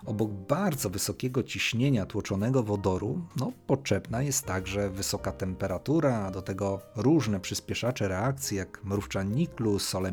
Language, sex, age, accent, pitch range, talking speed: Polish, male, 40-59, native, 100-125 Hz, 130 wpm